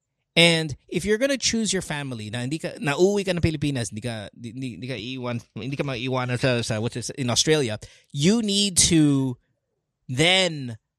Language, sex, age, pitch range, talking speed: English, male, 20-39, 130-180 Hz, 80 wpm